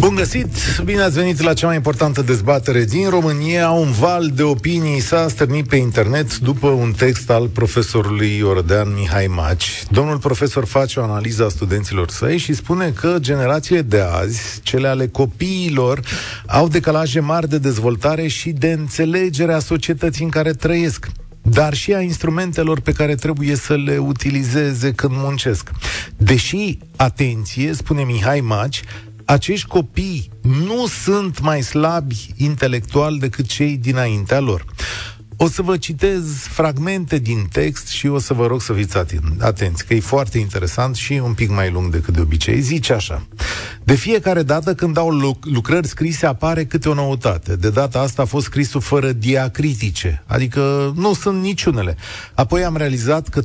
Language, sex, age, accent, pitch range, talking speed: Romanian, male, 40-59, native, 110-155 Hz, 160 wpm